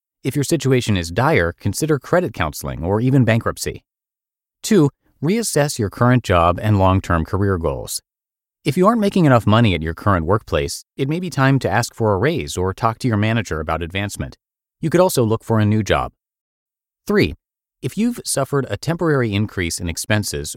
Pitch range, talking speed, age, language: 90-135 Hz, 185 wpm, 30-49, English